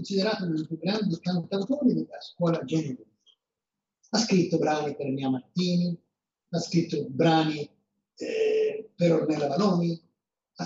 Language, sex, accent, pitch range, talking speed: Italian, male, native, 155-230 Hz, 130 wpm